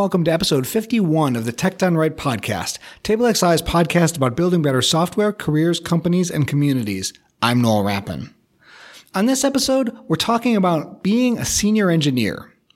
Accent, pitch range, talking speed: American, 140-200 Hz, 155 wpm